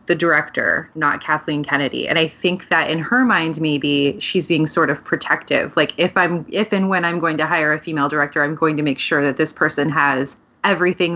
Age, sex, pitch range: 20-39, female, 160-205 Hz